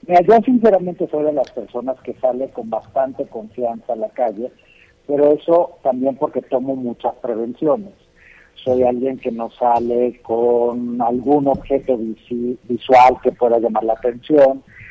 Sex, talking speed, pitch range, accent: male, 145 wpm, 125-155 Hz, Mexican